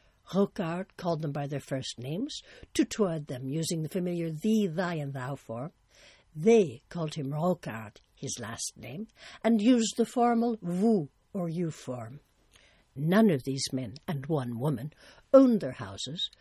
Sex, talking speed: female, 155 wpm